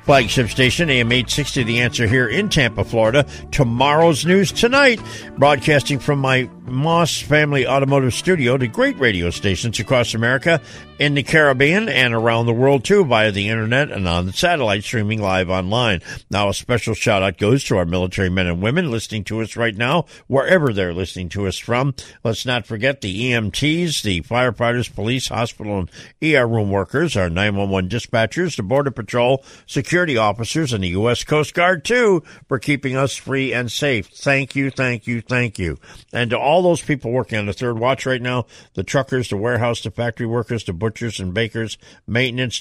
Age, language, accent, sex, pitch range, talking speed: 60-79, English, American, male, 110-140 Hz, 180 wpm